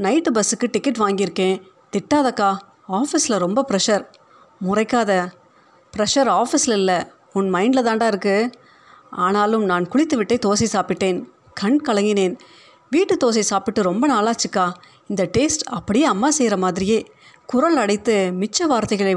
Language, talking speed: Tamil, 120 wpm